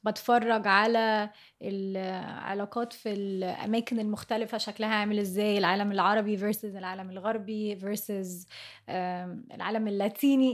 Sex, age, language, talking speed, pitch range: female, 20-39, Arabic, 95 wpm, 210-255 Hz